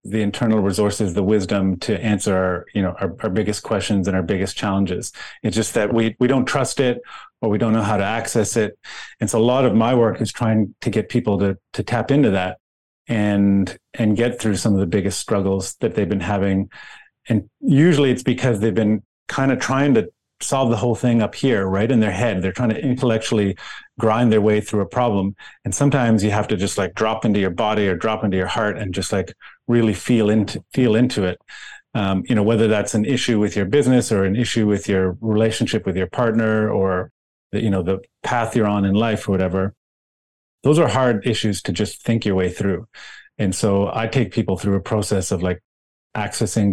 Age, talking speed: 30-49, 215 wpm